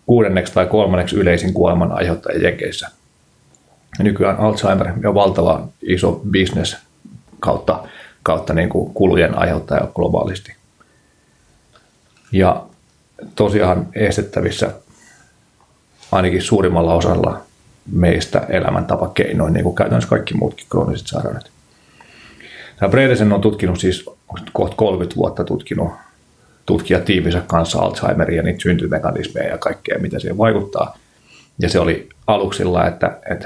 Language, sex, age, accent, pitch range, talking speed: Finnish, male, 30-49, native, 85-100 Hz, 110 wpm